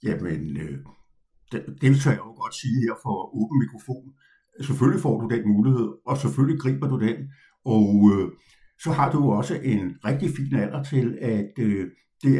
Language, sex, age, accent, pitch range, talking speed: Danish, male, 60-79, native, 105-150 Hz, 165 wpm